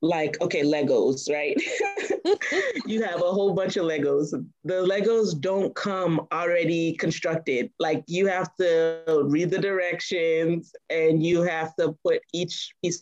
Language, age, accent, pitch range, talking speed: English, 20-39, American, 145-170 Hz, 145 wpm